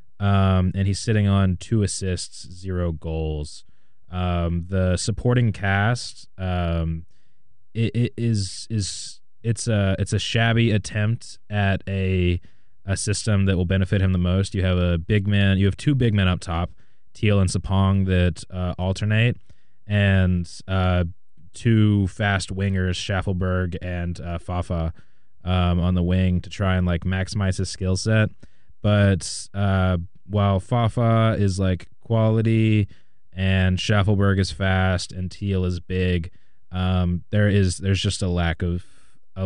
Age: 20-39